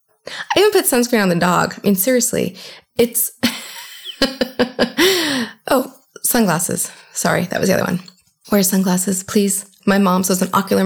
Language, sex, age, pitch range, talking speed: English, female, 20-39, 190-255 Hz, 150 wpm